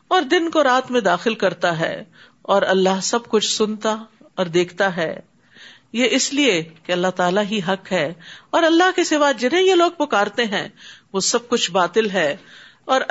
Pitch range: 195-250 Hz